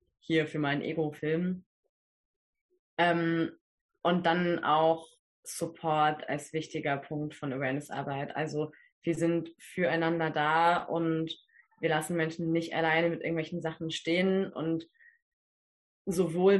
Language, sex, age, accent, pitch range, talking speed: German, female, 20-39, German, 160-185 Hz, 110 wpm